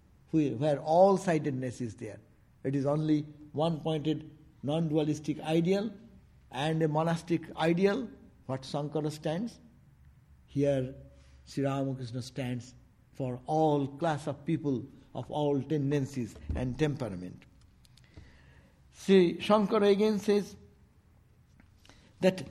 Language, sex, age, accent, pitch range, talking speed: English, male, 60-79, Indian, 135-165 Hz, 100 wpm